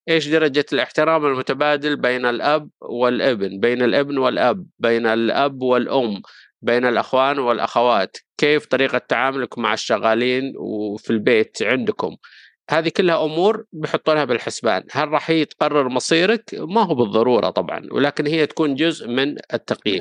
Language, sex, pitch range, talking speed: Arabic, male, 125-165 Hz, 130 wpm